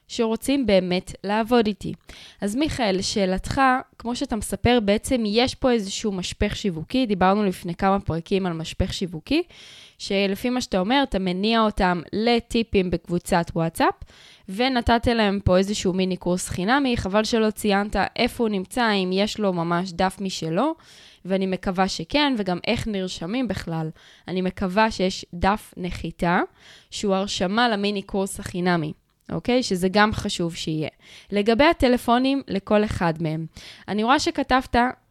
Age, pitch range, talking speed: 10-29, 185-240 Hz, 140 wpm